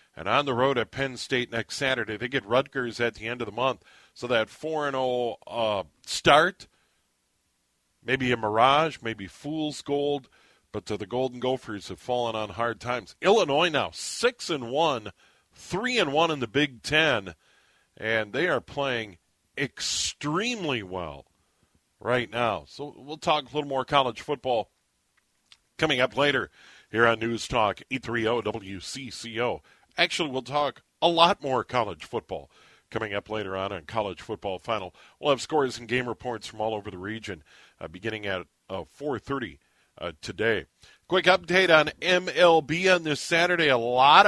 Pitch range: 105-150 Hz